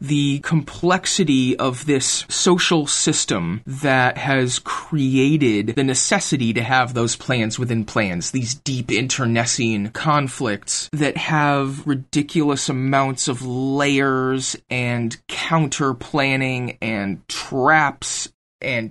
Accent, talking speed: American, 100 wpm